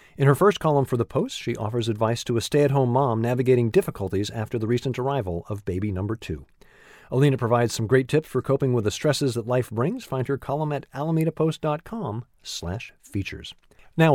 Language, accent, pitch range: English, American, 115-160 Hz